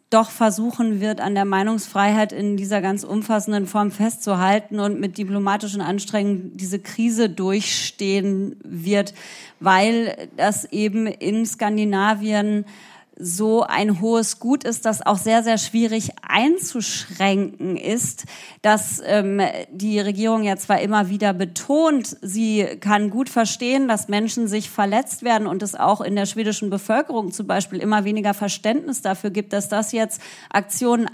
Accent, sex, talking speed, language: German, female, 140 wpm, German